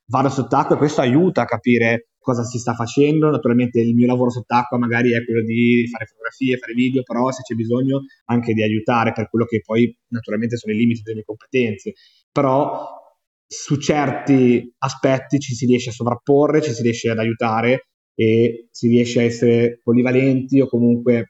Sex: male